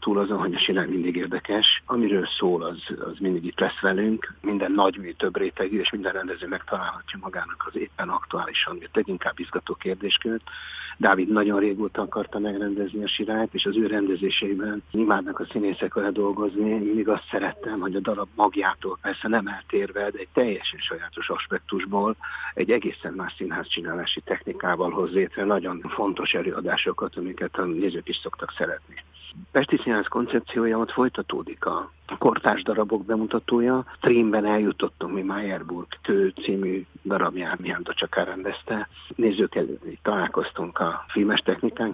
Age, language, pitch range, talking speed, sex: 50-69, Hungarian, 100-120 Hz, 145 wpm, male